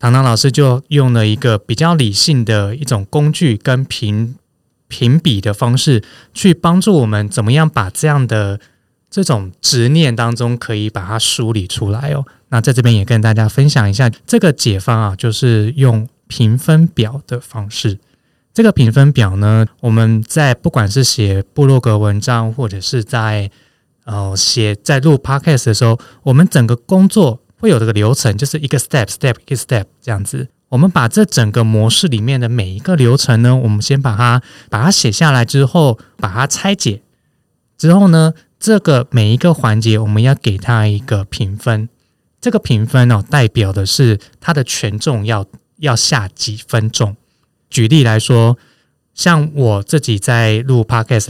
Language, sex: Chinese, male